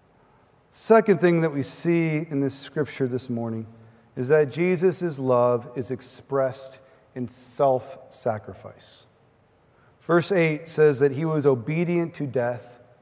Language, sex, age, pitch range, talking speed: English, male, 40-59, 130-180 Hz, 125 wpm